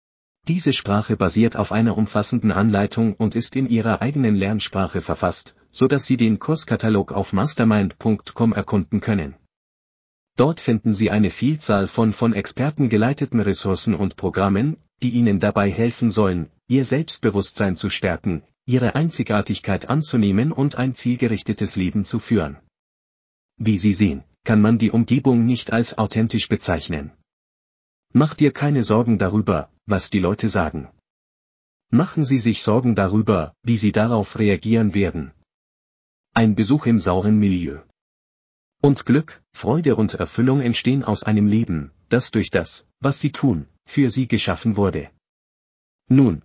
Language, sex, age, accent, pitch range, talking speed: German, male, 40-59, German, 95-115 Hz, 140 wpm